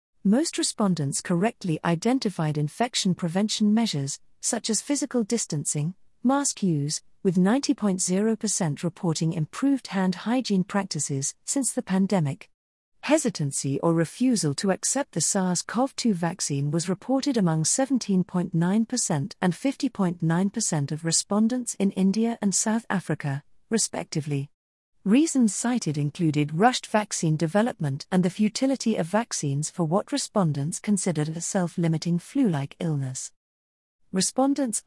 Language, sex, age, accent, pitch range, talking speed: English, female, 40-59, British, 160-225 Hz, 110 wpm